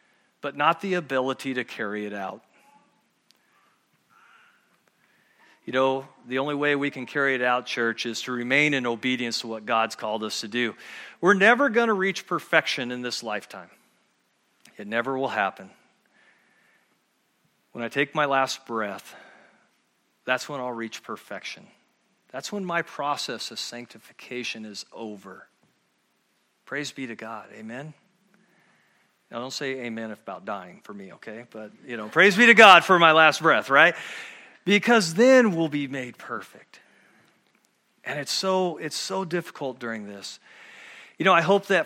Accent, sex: American, male